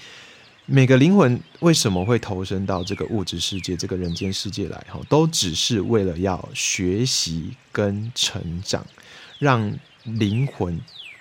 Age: 20-39